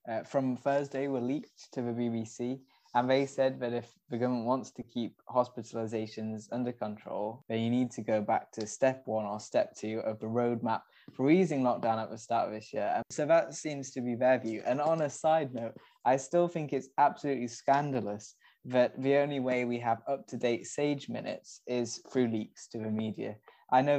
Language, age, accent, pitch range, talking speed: English, 20-39, British, 115-140 Hz, 205 wpm